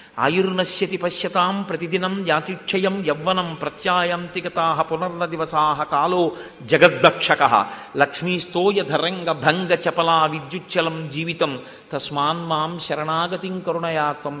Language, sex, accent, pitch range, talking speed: Telugu, male, native, 170-230 Hz, 80 wpm